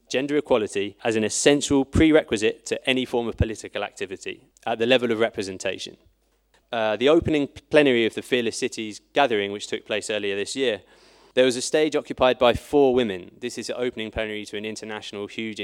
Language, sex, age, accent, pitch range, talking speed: German, male, 20-39, British, 105-130 Hz, 190 wpm